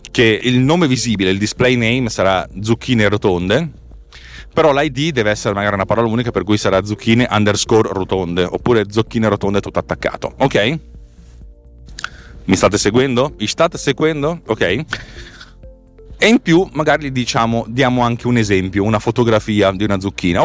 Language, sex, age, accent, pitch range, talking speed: Italian, male, 30-49, native, 90-125 Hz, 150 wpm